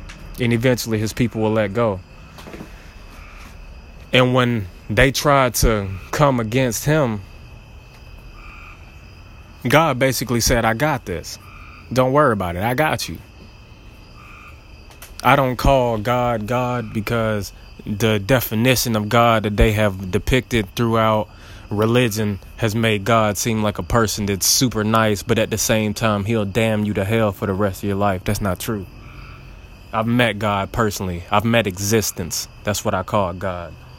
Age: 20-39